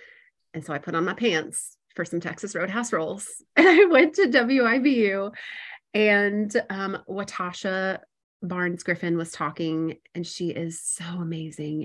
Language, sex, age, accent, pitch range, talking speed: English, female, 30-49, American, 160-200 Hz, 145 wpm